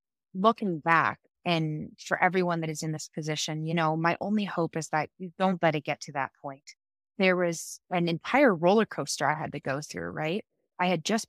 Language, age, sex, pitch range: English, 20-39, female, 155-190 Hz